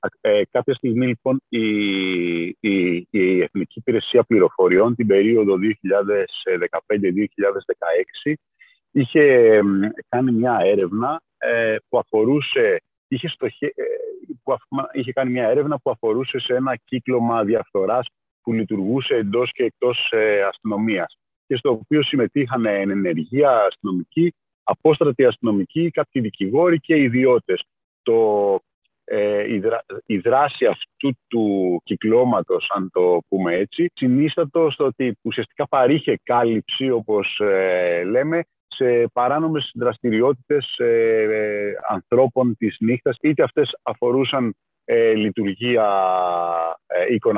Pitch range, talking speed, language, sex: 105-150 Hz, 100 wpm, Greek, male